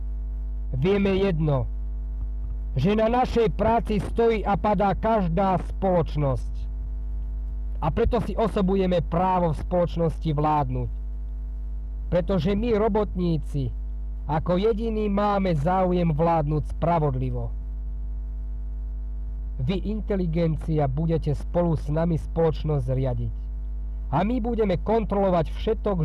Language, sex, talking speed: Slovak, male, 95 wpm